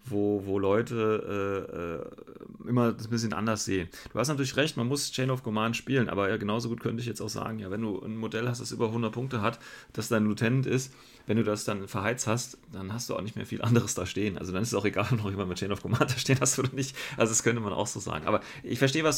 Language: German